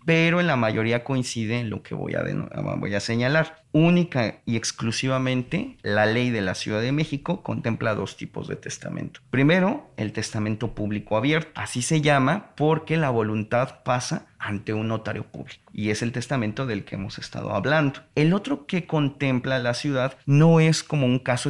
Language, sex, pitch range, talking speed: Spanish, male, 115-150 Hz, 180 wpm